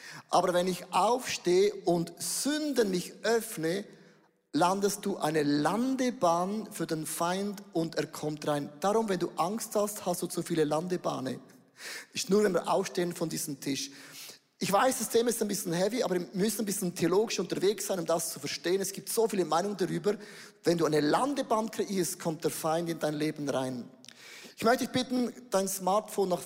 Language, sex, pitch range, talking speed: German, male, 165-215 Hz, 185 wpm